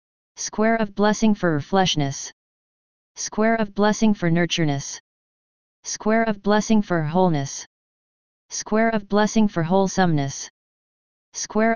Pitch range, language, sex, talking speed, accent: 170-215 Hz, English, female, 105 wpm, American